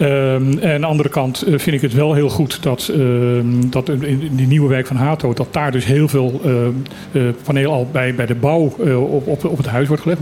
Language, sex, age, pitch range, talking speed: Dutch, male, 50-69, 130-155 Hz, 255 wpm